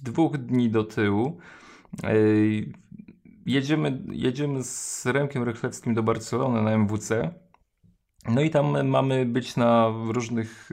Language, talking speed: Polish, 115 wpm